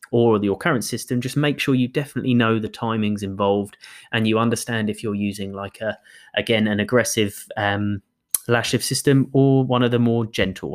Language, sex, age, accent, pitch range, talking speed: English, male, 20-39, British, 100-125 Hz, 190 wpm